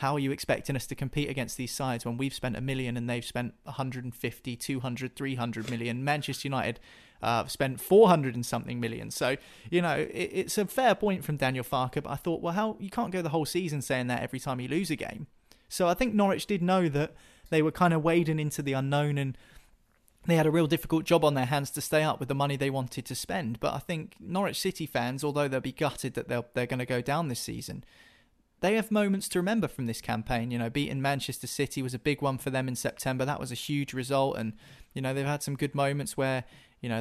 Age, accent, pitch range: 30-49, British, 125-155 Hz